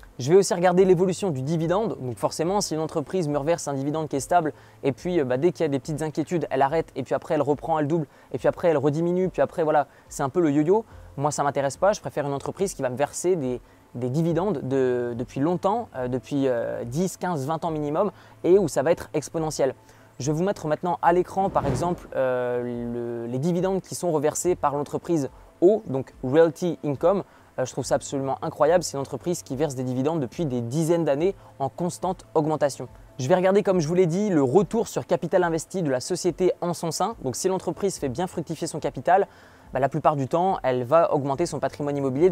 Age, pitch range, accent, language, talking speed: 20-39, 135-175 Hz, French, French, 230 wpm